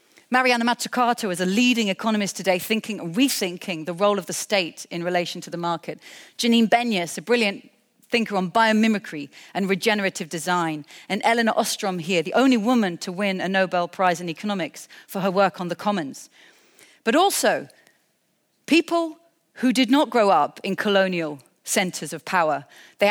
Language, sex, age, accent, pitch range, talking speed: Dutch, female, 40-59, British, 180-235 Hz, 165 wpm